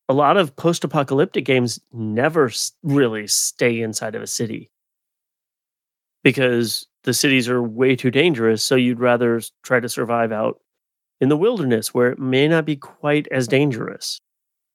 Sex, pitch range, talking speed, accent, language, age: male, 120-150 Hz, 155 wpm, American, English, 30-49